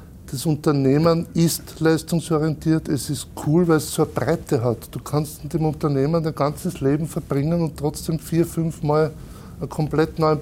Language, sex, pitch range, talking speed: German, male, 130-155 Hz, 175 wpm